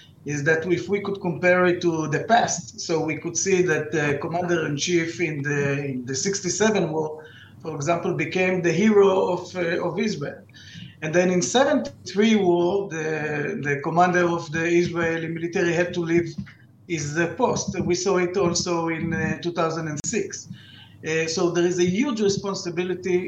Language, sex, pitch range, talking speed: English, male, 150-175 Hz, 165 wpm